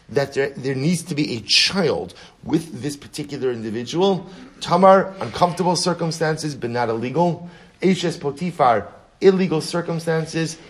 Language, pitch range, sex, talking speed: English, 110-150 Hz, male, 125 wpm